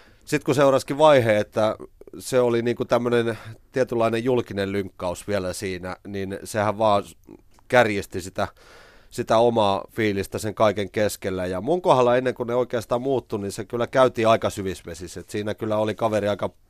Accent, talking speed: native, 160 wpm